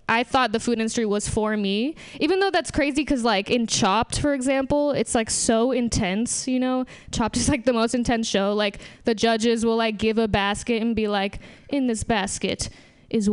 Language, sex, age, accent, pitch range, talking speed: English, female, 10-29, American, 225-290 Hz, 205 wpm